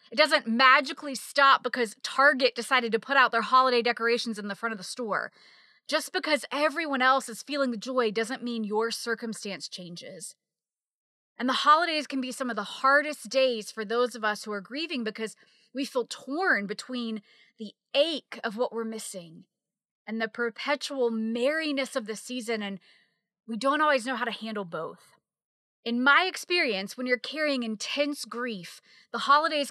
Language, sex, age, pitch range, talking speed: English, female, 20-39, 220-275 Hz, 175 wpm